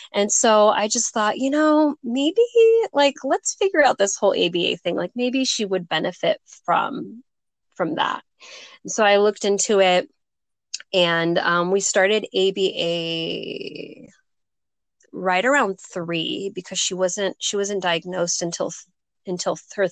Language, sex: English, female